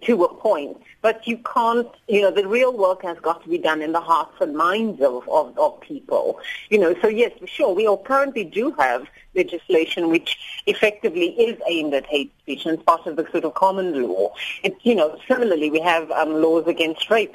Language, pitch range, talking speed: English, 165-245 Hz, 210 wpm